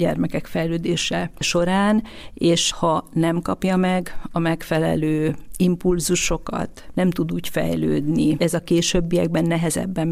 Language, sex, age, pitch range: Hungarian, female, 40-59, 160-175 Hz